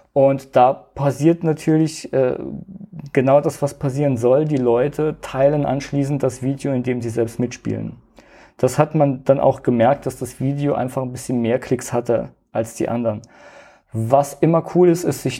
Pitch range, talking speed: 125-145 Hz, 175 wpm